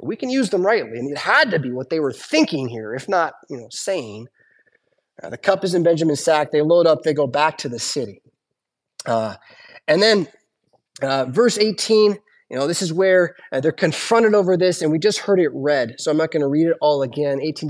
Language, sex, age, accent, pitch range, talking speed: English, male, 20-39, American, 150-225 Hz, 235 wpm